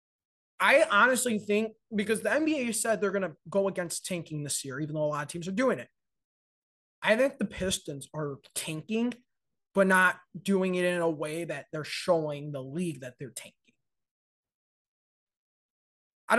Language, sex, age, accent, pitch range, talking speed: English, male, 20-39, American, 160-210 Hz, 170 wpm